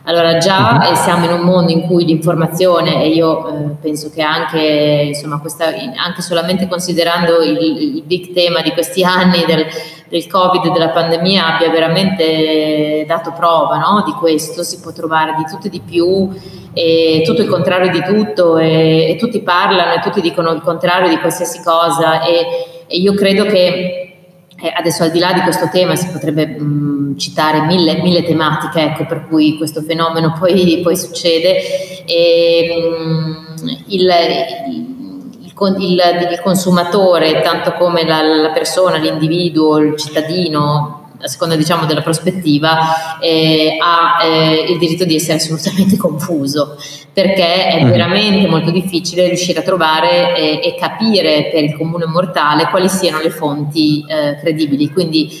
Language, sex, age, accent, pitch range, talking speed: Italian, female, 20-39, native, 160-180 Hz, 155 wpm